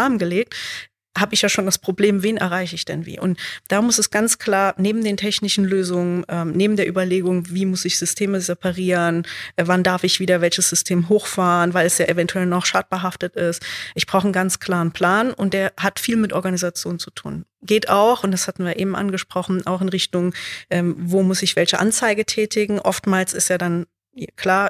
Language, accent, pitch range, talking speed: German, German, 180-210 Hz, 200 wpm